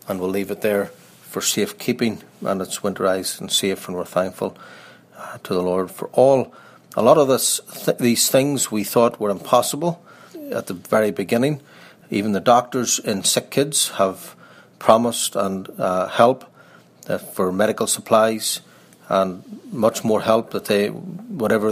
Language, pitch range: English, 95-120 Hz